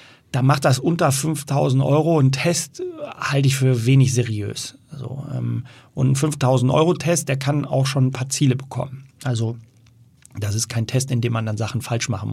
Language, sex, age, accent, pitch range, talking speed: German, male, 40-59, German, 120-135 Hz, 200 wpm